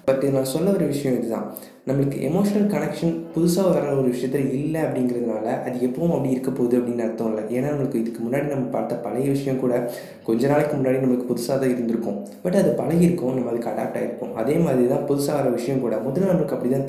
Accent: native